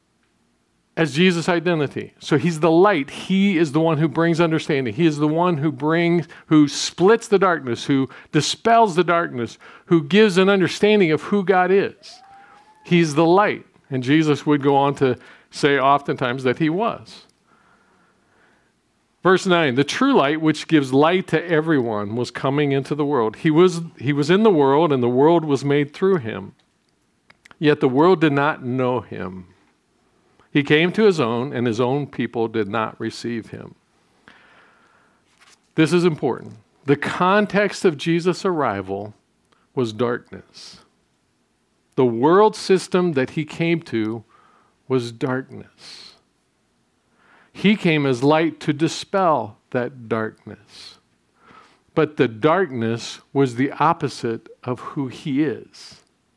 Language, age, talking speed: English, 50-69, 145 wpm